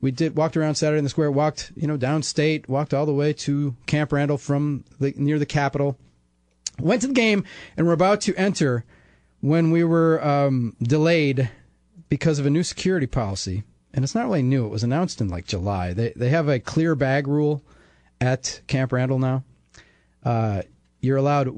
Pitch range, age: 120-155 Hz, 30-49